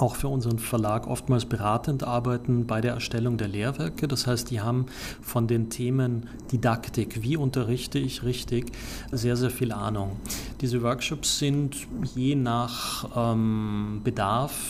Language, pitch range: German, 110-125 Hz